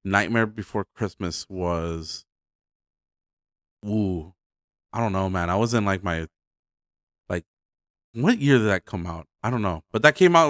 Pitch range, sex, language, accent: 95-120 Hz, male, English, American